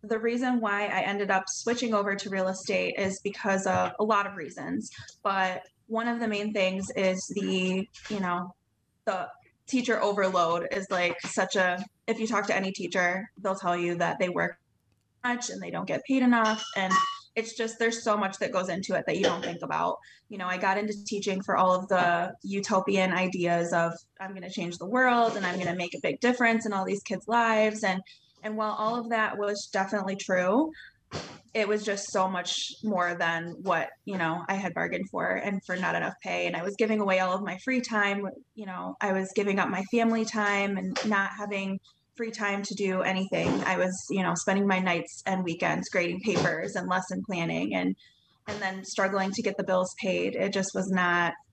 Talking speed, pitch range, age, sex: 210 wpm, 185-215 Hz, 20-39, female